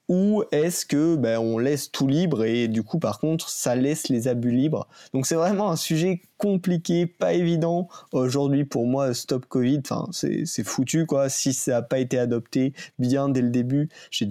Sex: male